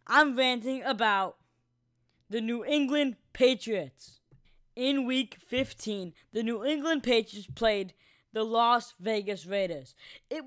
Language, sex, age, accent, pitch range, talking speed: English, female, 20-39, American, 210-270 Hz, 115 wpm